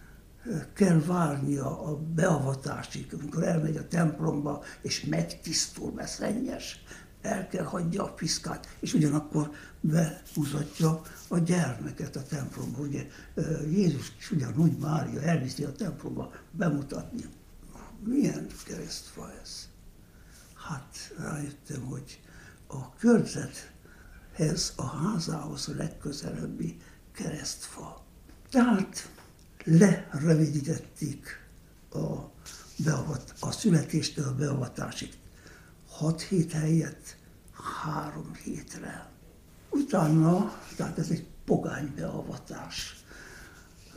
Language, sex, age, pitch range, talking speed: Hungarian, male, 60-79, 150-175 Hz, 90 wpm